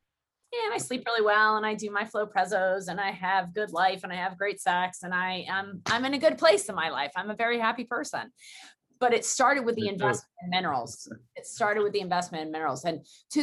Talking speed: 240 wpm